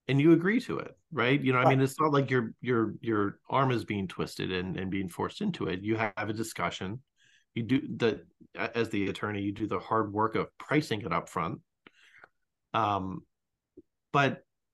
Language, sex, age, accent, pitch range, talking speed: English, male, 30-49, American, 105-130 Hz, 195 wpm